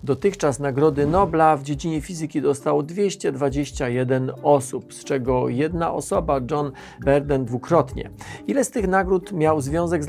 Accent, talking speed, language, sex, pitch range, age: native, 135 wpm, Polish, male, 135-195 Hz, 40-59